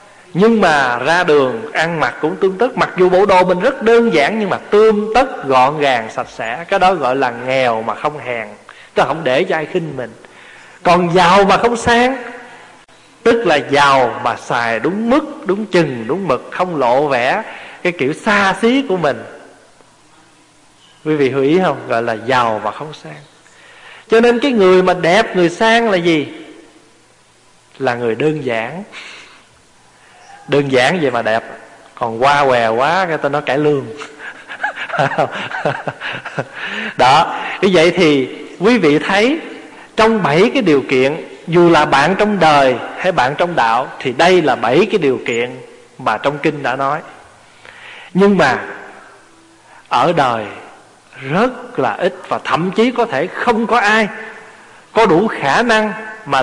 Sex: male